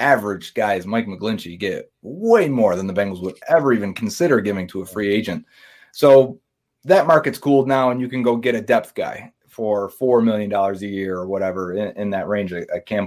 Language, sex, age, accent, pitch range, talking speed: English, male, 30-49, American, 100-130 Hz, 200 wpm